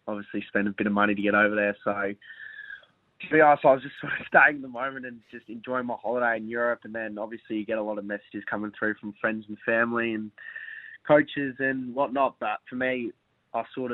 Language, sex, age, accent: English, male, 20-39, Australian